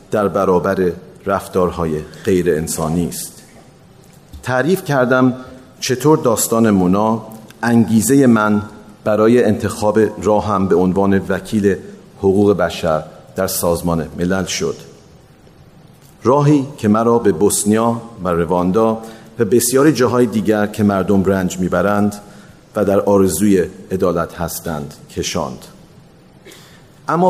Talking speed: 100 wpm